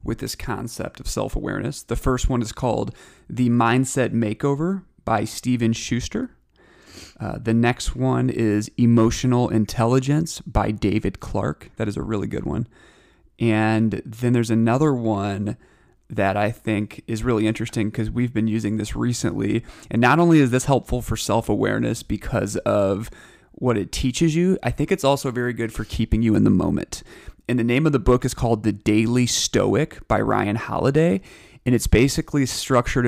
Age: 30-49